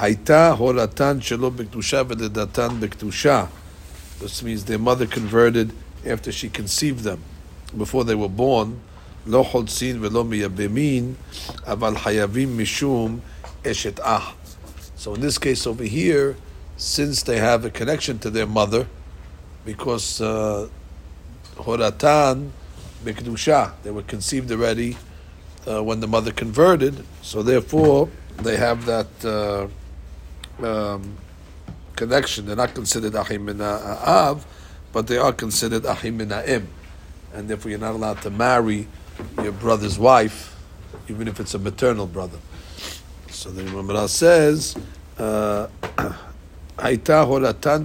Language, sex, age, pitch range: English, male, 60-79, 90-120 Hz